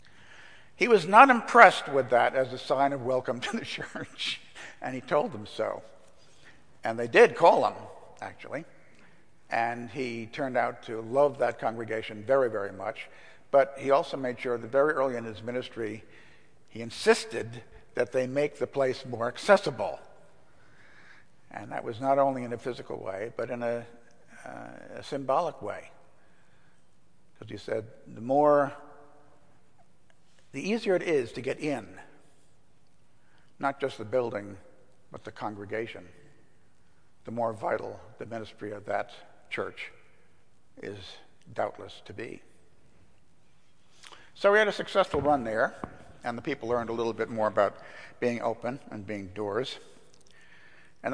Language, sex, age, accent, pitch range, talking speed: English, male, 60-79, American, 115-140 Hz, 145 wpm